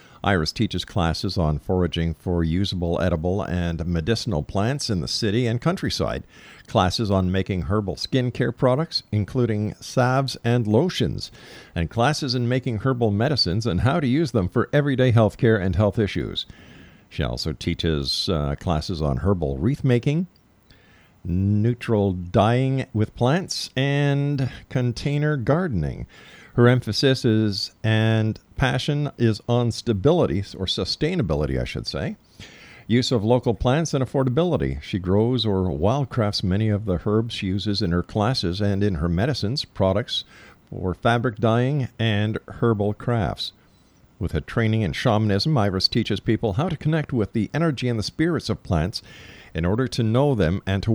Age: 50-69